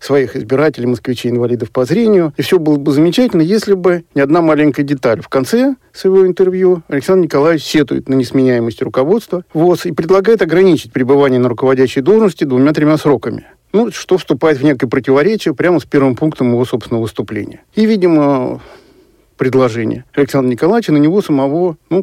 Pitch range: 135-175 Hz